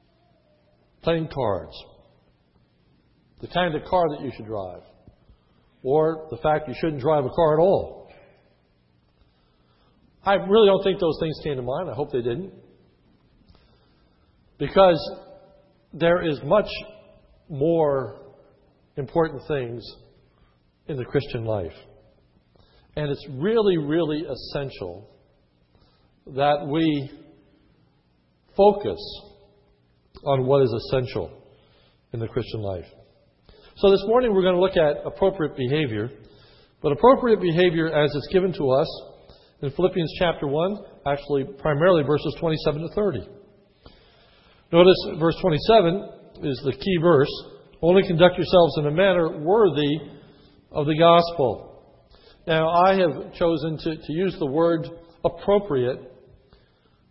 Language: English